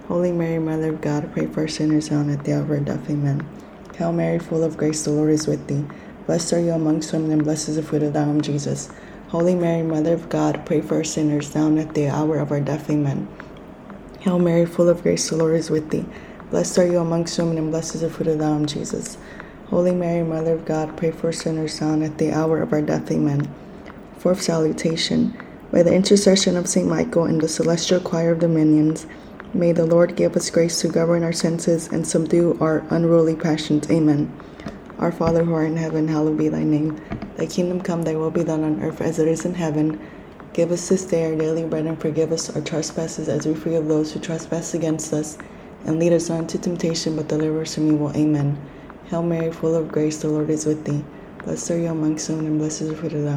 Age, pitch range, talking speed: 20-39, 155-170 Hz, 235 wpm